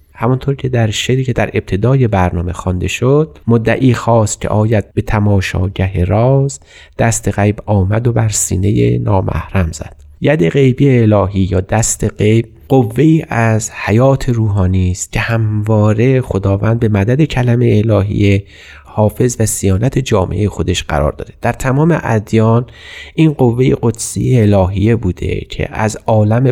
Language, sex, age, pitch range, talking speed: Persian, male, 30-49, 100-125 Hz, 140 wpm